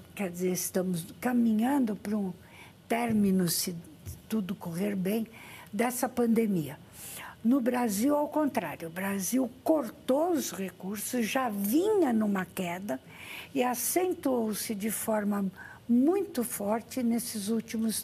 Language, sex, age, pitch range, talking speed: Portuguese, female, 60-79, 205-265 Hz, 115 wpm